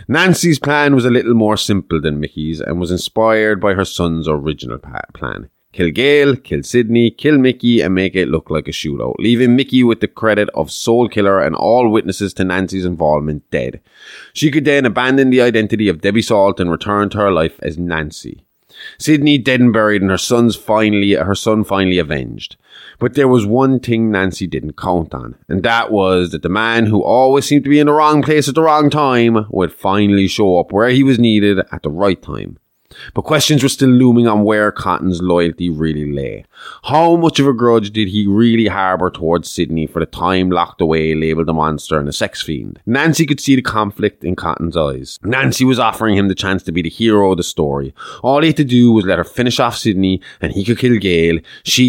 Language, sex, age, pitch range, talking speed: English, male, 20-39, 85-120 Hz, 215 wpm